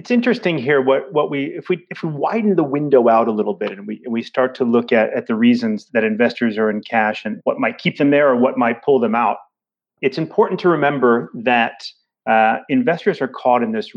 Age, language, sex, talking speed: 30-49, English, male, 235 wpm